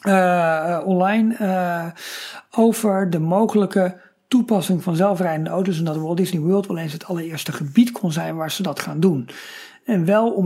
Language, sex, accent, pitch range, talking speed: Dutch, male, Dutch, 165-200 Hz, 180 wpm